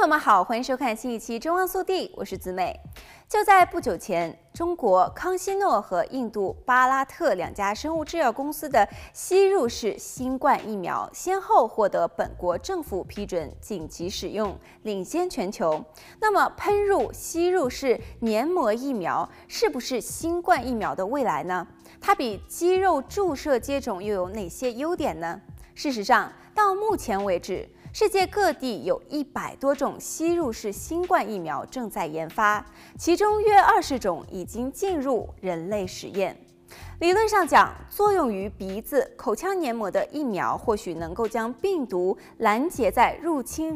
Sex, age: female, 20-39